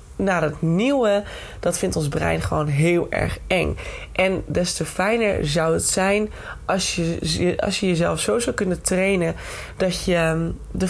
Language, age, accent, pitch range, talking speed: Dutch, 20-39, Dutch, 155-200 Hz, 165 wpm